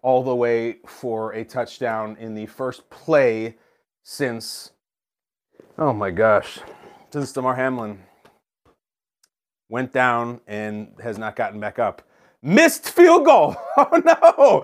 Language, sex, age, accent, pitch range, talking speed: English, male, 30-49, American, 130-190 Hz, 125 wpm